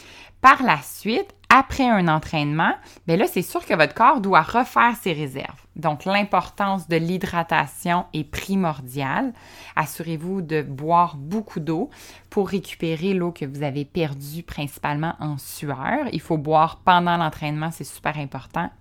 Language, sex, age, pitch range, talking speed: French, female, 20-39, 155-205 Hz, 145 wpm